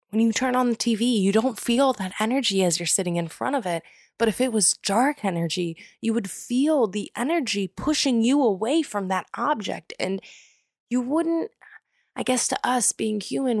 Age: 20-39